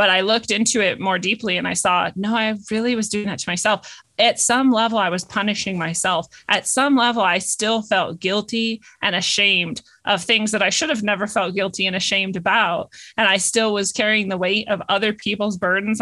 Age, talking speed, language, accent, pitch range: 30-49, 215 wpm, English, American, 190-230 Hz